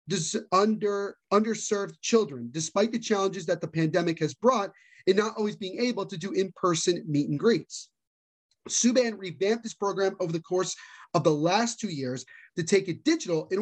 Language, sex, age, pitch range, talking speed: English, male, 30-49, 175-225 Hz, 170 wpm